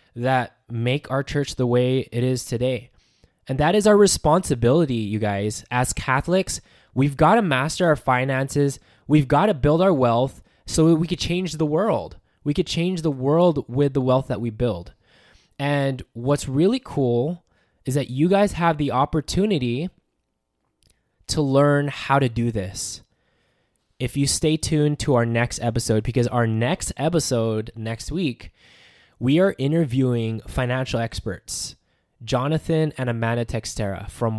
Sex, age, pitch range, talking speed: male, 20-39, 115-150 Hz, 155 wpm